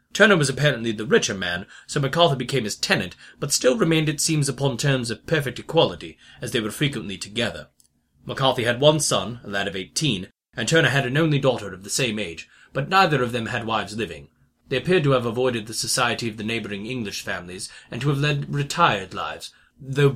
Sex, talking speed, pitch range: male, 210 wpm, 105-135 Hz